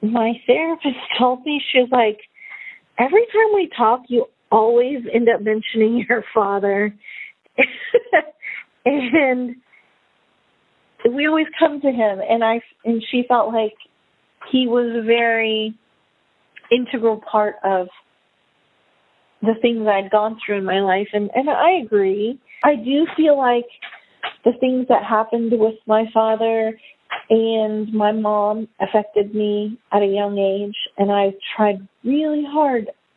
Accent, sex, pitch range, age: American, female, 215-270 Hz, 40-59